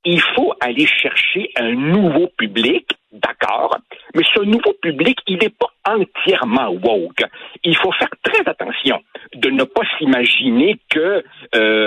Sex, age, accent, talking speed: male, 60-79, French, 140 wpm